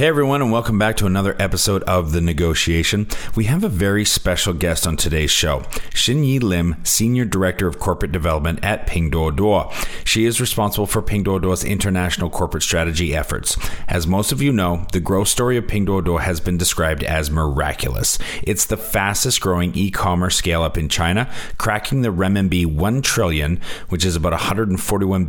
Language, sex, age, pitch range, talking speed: English, male, 40-59, 85-105 Hz, 175 wpm